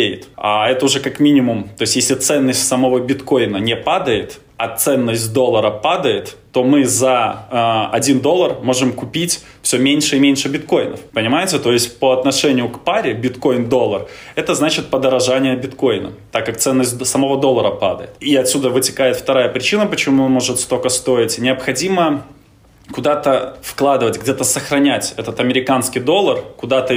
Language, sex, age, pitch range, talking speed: Russian, male, 20-39, 125-145 Hz, 150 wpm